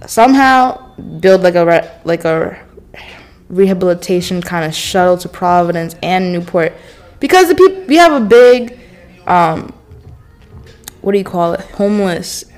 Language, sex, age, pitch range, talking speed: English, female, 20-39, 160-205 Hz, 140 wpm